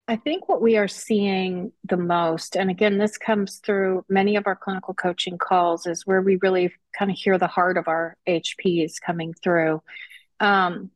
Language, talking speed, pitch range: English, 185 wpm, 180-210 Hz